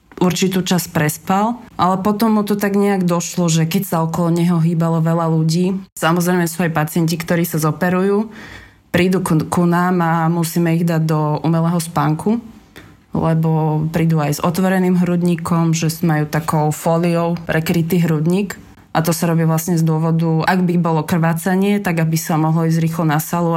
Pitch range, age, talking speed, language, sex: 160-175 Hz, 20-39, 170 wpm, Slovak, female